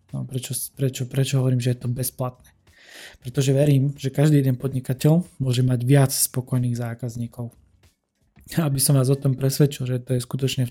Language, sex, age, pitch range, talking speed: Slovak, male, 20-39, 125-140 Hz, 175 wpm